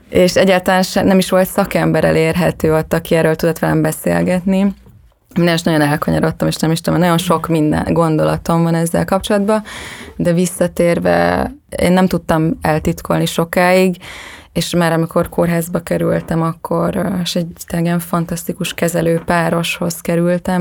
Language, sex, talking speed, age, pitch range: Hungarian, female, 140 wpm, 20-39, 160-180 Hz